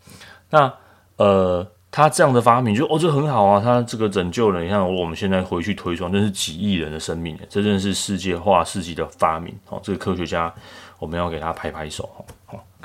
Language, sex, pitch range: Chinese, male, 85-100 Hz